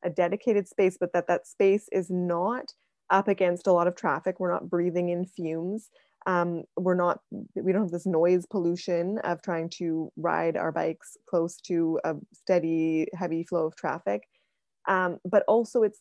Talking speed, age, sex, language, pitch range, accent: 170 wpm, 20-39, female, English, 170-205 Hz, American